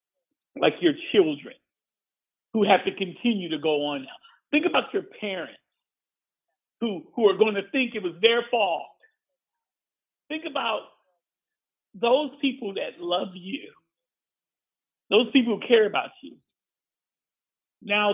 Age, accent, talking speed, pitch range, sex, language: 50-69, American, 125 wpm, 180-280 Hz, male, English